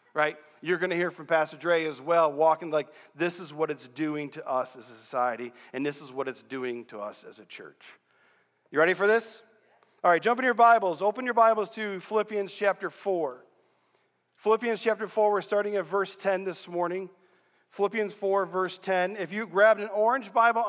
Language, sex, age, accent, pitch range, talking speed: English, male, 40-59, American, 160-205 Hz, 205 wpm